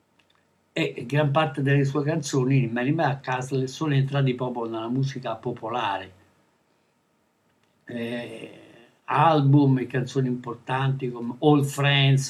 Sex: male